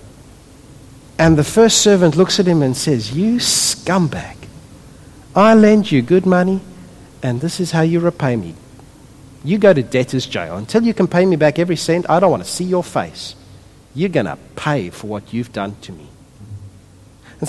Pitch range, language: 140-220 Hz, English